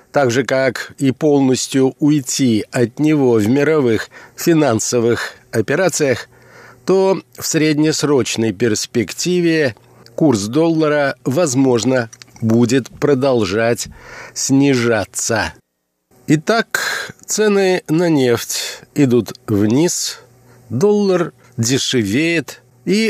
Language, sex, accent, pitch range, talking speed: Russian, male, native, 120-150 Hz, 80 wpm